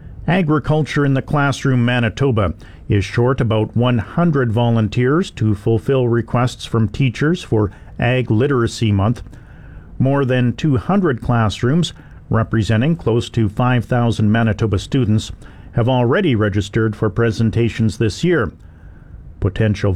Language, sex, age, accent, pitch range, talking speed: English, male, 50-69, American, 110-135 Hz, 110 wpm